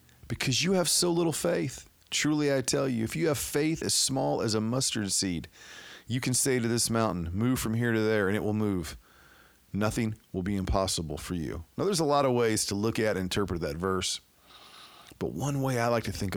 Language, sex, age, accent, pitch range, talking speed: English, male, 40-59, American, 95-125 Hz, 225 wpm